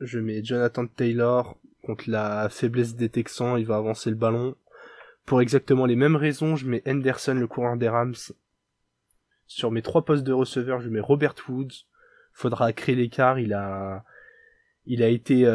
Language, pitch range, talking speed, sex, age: French, 115-140 Hz, 170 wpm, male, 20-39